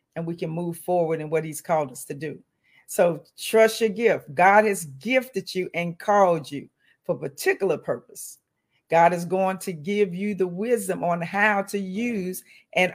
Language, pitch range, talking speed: English, 180-235 Hz, 185 wpm